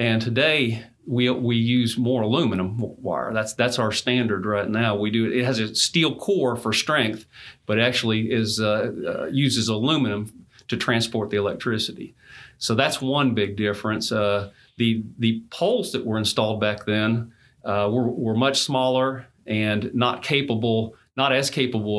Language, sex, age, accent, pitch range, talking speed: English, male, 40-59, American, 110-130 Hz, 160 wpm